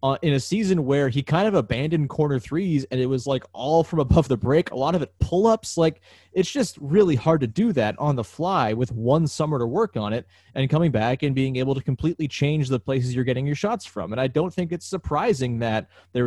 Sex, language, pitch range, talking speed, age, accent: male, English, 115-150 Hz, 245 wpm, 20-39, American